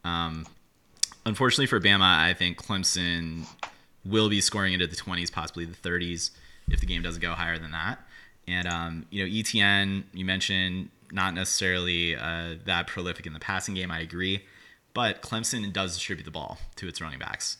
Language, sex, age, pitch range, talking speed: English, male, 30-49, 85-95 Hz, 175 wpm